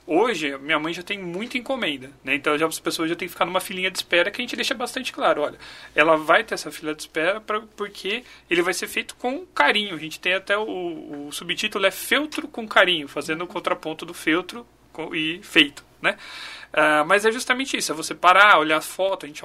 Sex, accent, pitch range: male, Brazilian, 170-240 Hz